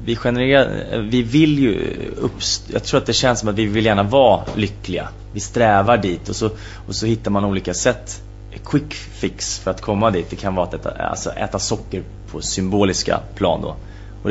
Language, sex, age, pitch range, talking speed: English, male, 30-49, 95-115 Hz, 200 wpm